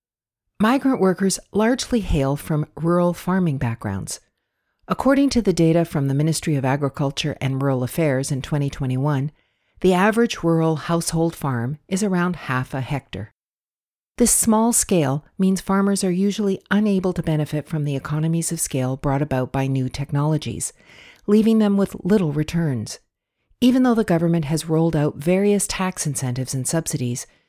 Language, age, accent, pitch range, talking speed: English, 50-69, American, 135-190 Hz, 150 wpm